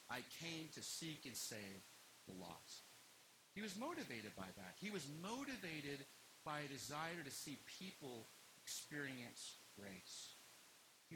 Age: 50-69